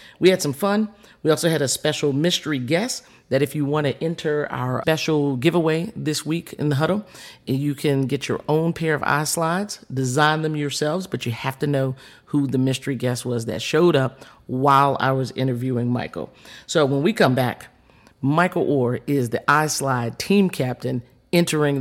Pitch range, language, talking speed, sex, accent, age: 135-185 Hz, English, 185 wpm, male, American, 40-59